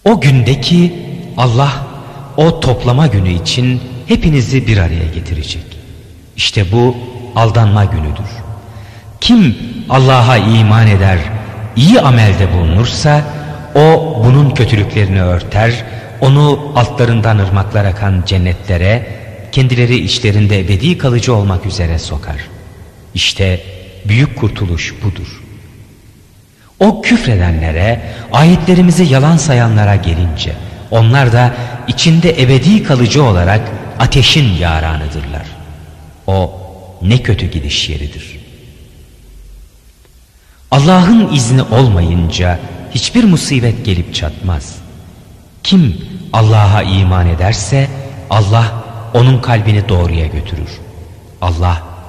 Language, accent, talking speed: Turkish, native, 90 wpm